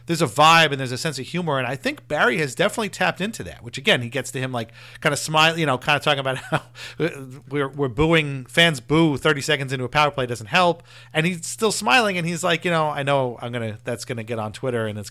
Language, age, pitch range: English, 40-59, 125-170 Hz